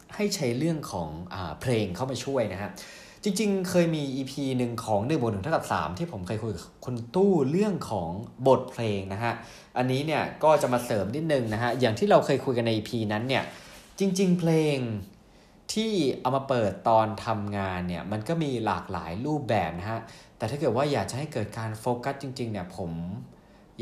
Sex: male